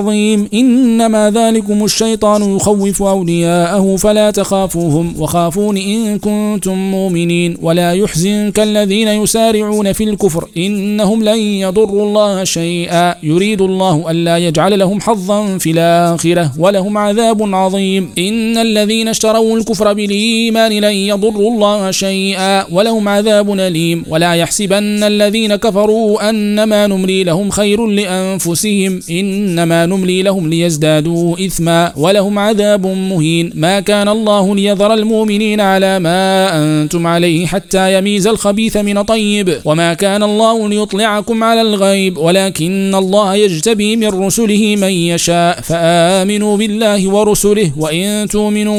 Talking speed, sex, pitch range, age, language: 115 wpm, male, 180-210 Hz, 40-59, Arabic